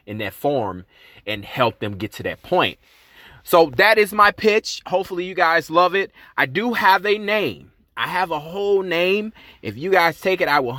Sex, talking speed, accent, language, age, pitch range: male, 205 wpm, American, English, 30-49, 125-165 Hz